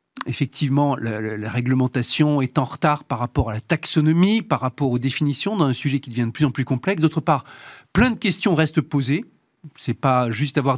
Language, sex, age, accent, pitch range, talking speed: French, male, 40-59, French, 130-165 Hz, 210 wpm